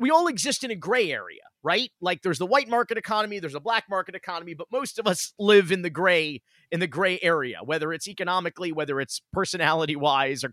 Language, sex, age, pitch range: English, male, 40-59, 145-185 Hz